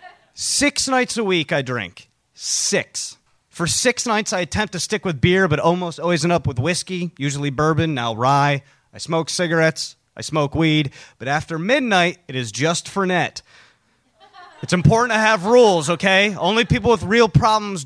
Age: 30-49